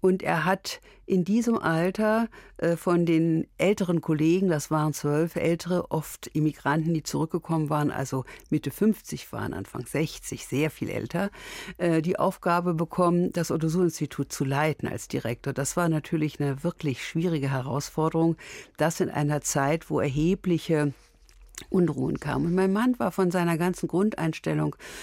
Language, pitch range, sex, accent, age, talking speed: German, 145-180 Hz, female, German, 60-79, 145 wpm